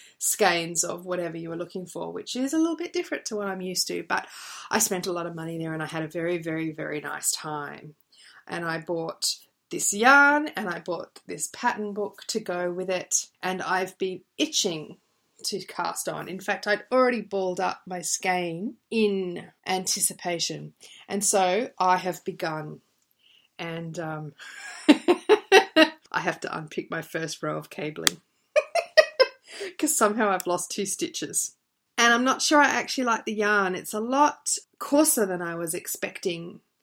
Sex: female